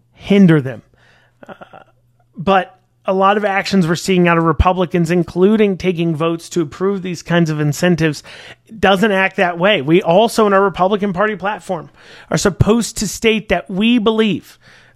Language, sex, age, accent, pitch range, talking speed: English, male, 30-49, American, 180-220 Hz, 165 wpm